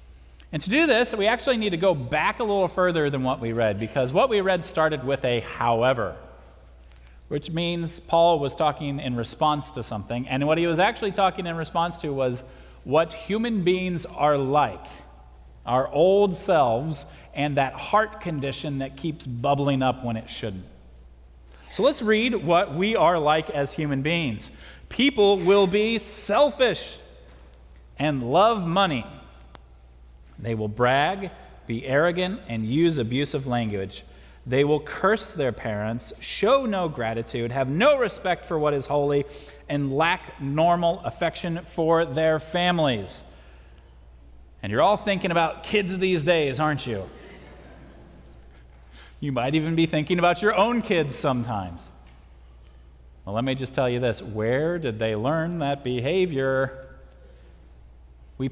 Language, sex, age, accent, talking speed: English, male, 40-59, American, 150 wpm